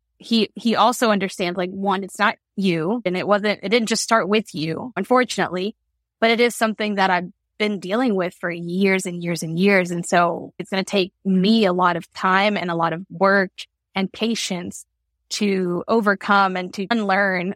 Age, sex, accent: 20-39, female, American